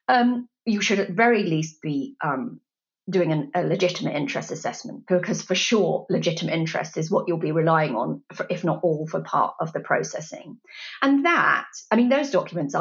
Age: 30-49